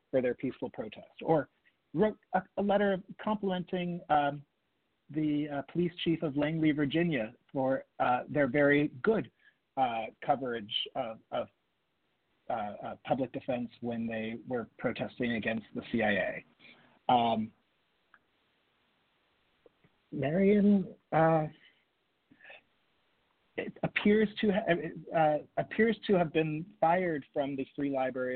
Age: 40-59